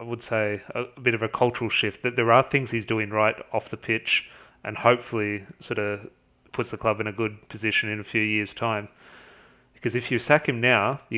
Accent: Australian